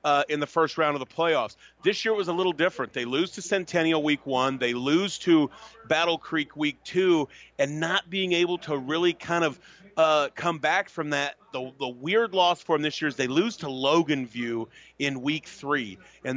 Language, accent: English, American